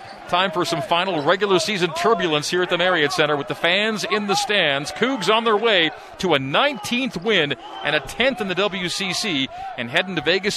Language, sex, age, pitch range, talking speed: English, male, 40-59, 150-195 Hz, 205 wpm